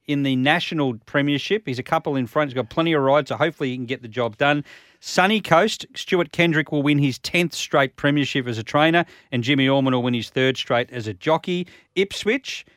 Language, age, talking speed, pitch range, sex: English, 40-59, 220 wpm, 125-155 Hz, male